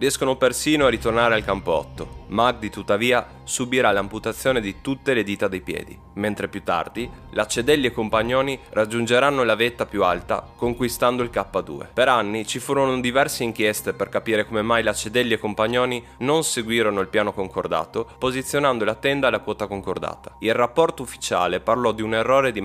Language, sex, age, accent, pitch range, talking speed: Italian, male, 20-39, native, 100-130 Hz, 165 wpm